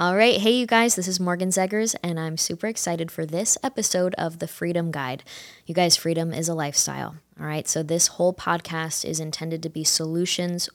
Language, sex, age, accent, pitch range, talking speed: English, female, 20-39, American, 150-170 Hz, 205 wpm